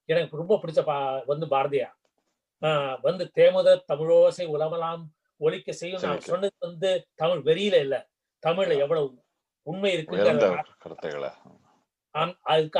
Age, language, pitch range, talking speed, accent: 30-49, Tamil, 150-205 Hz, 95 wpm, native